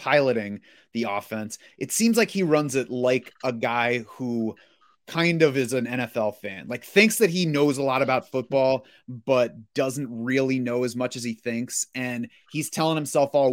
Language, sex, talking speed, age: English, male, 185 wpm, 30-49